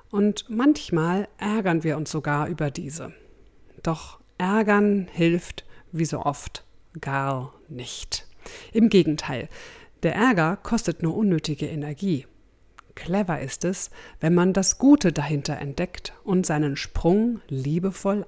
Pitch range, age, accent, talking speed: 150-205 Hz, 50-69, German, 120 wpm